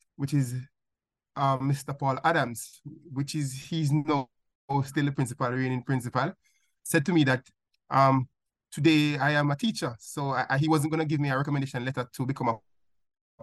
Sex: male